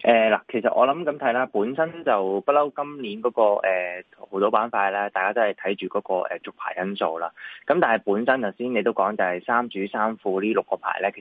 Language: Chinese